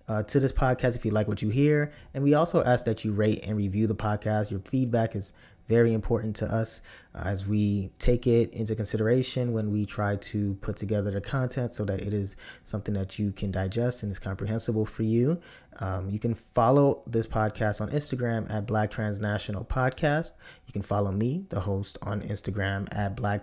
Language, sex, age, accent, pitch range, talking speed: English, male, 20-39, American, 105-120 Hz, 200 wpm